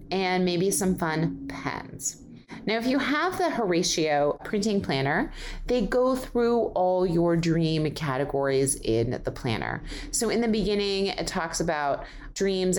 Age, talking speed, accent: 30-49, 145 wpm, American